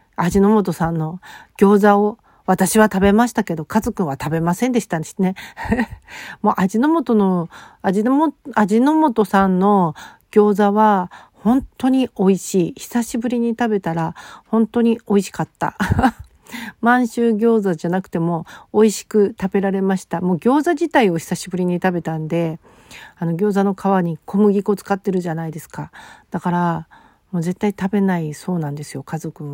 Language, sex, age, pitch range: Japanese, female, 40-59, 170-215 Hz